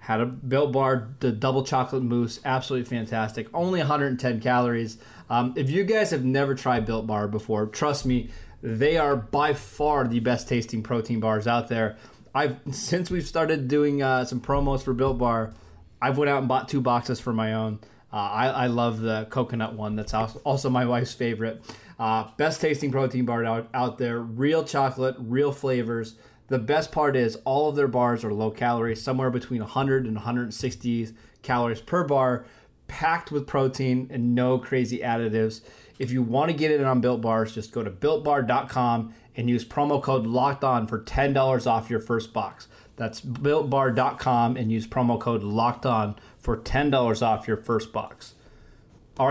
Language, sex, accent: English, male, American